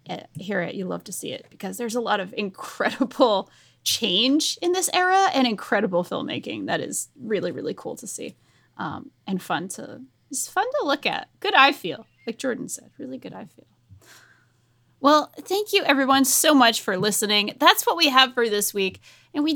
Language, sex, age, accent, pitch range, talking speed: English, female, 20-39, American, 195-275 Hz, 195 wpm